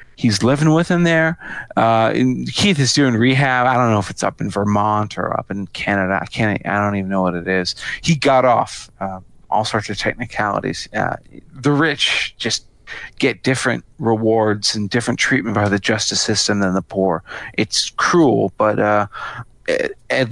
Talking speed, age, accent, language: 185 wpm, 40-59, American, English